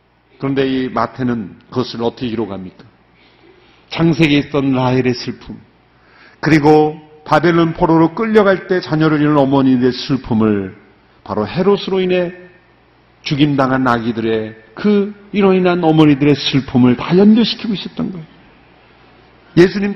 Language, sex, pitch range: Korean, male, 135-205 Hz